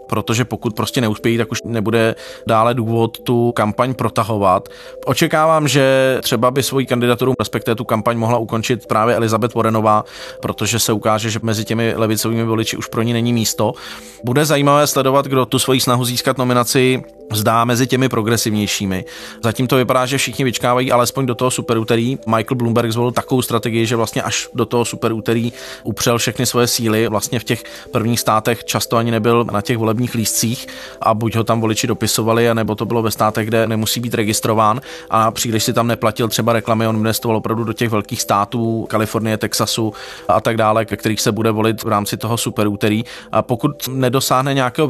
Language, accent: Czech, native